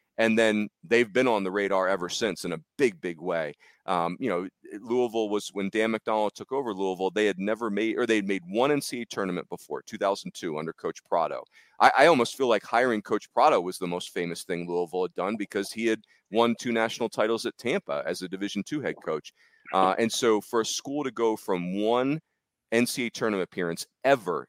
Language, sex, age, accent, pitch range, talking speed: English, male, 40-59, American, 95-115 Hz, 210 wpm